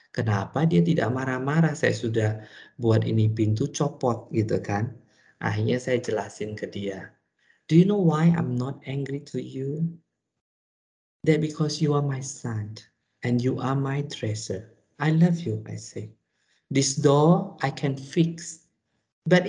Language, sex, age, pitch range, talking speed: Indonesian, male, 50-69, 120-165 Hz, 150 wpm